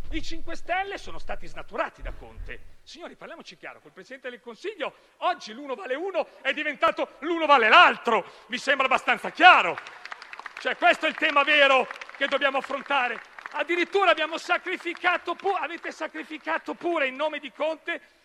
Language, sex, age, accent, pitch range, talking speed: Italian, male, 40-59, native, 225-310 Hz, 160 wpm